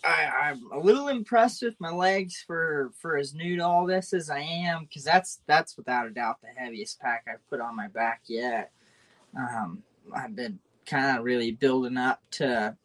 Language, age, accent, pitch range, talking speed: English, 20-39, American, 130-185 Hz, 195 wpm